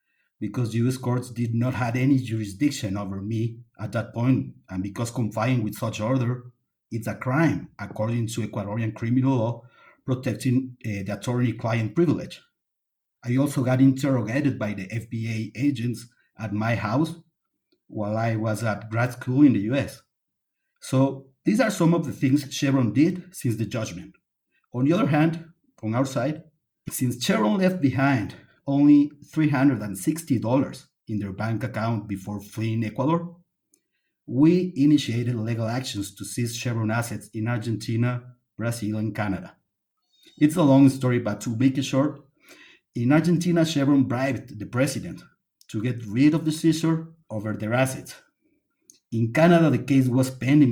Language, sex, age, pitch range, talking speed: English, male, 50-69, 115-145 Hz, 150 wpm